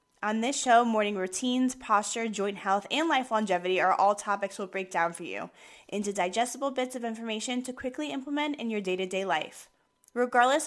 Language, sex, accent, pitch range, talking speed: English, female, American, 205-255 Hz, 180 wpm